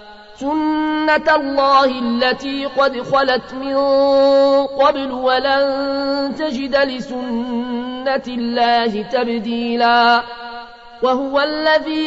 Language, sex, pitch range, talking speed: Arabic, male, 230-270 Hz, 70 wpm